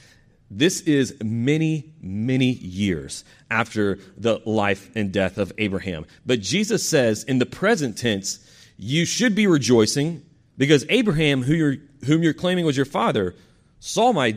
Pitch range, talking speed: 95-135 Hz, 140 wpm